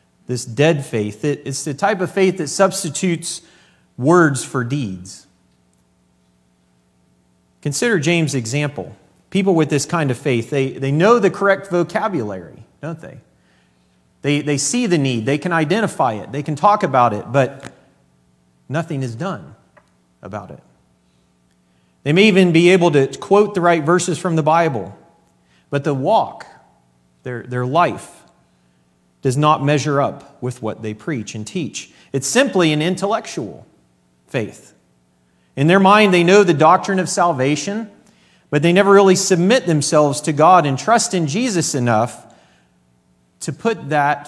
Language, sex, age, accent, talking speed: English, male, 40-59, American, 150 wpm